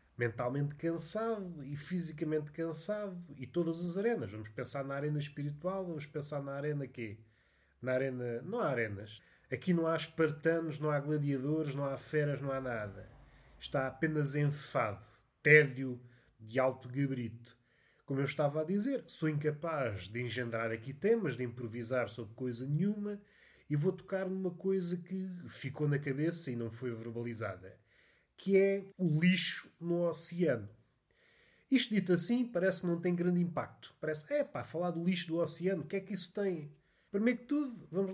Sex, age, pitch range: male, 20-39, 130-190 Hz